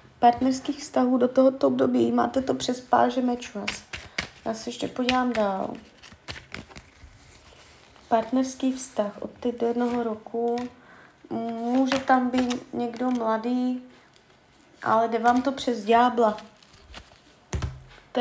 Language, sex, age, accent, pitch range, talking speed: Czech, female, 20-39, native, 220-260 Hz, 110 wpm